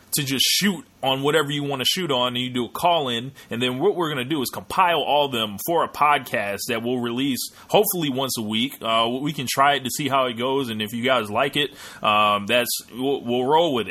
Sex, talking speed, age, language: male, 260 wpm, 20-39, English